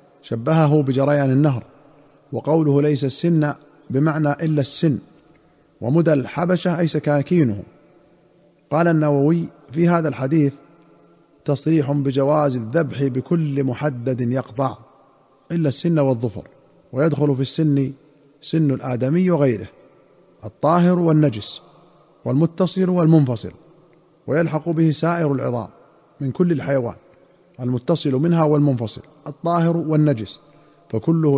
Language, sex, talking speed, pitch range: Arabic, male, 95 wpm, 135-165 Hz